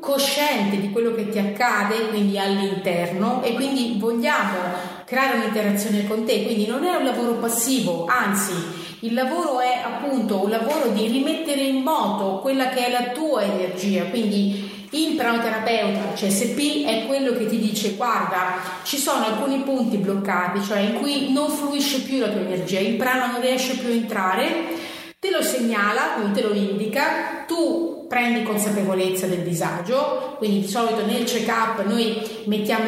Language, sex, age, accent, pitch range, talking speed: Italian, female, 30-49, native, 205-260 Hz, 160 wpm